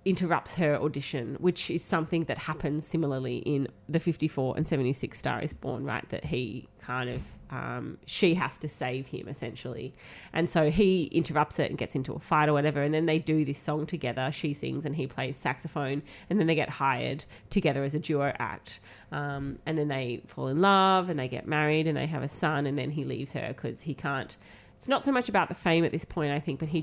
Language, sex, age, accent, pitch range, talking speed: English, female, 20-39, Australian, 140-170 Hz, 230 wpm